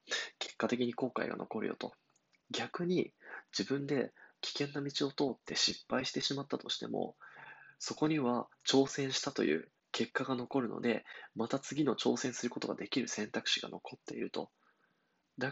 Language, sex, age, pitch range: Japanese, male, 20-39, 115-140 Hz